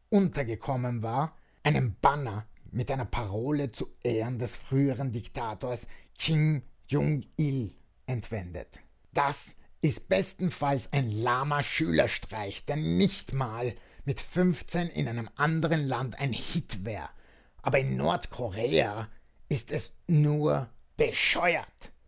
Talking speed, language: 110 wpm, German